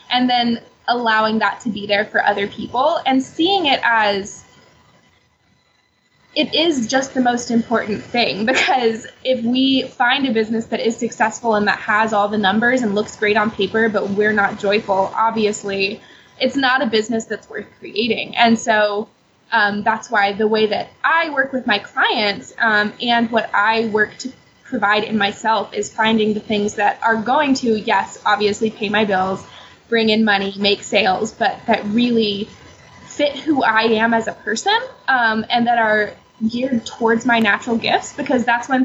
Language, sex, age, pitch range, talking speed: English, female, 20-39, 210-240 Hz, 180 wpm